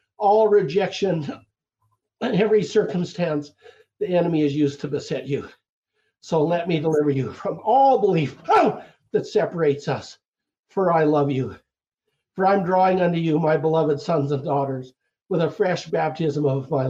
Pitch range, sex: 150-230 Hz, male